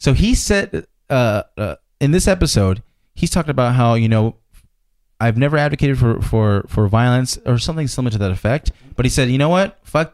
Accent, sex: American, male